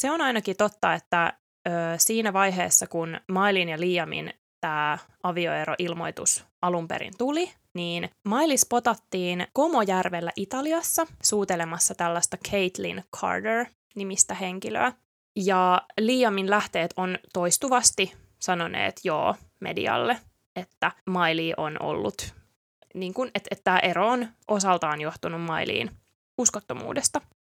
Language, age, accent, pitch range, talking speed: Finnish, 20-39, native, 175-240 Hz, 105 wpm